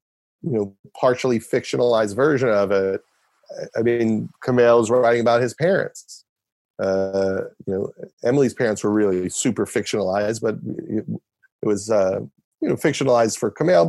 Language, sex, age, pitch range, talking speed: English, male, 40-59, 110-140 Hz, 145 wpm